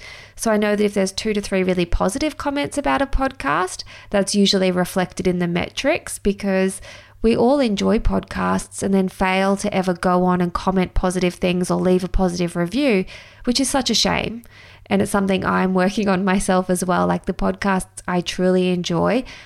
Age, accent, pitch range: 20-39, Australian, 175-200 Hz